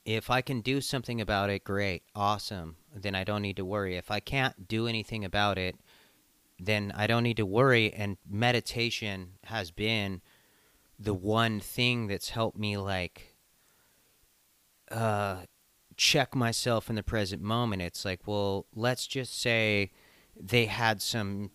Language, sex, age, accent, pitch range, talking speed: English, male, 30-49, American, 95-115 Hz, 155 wpm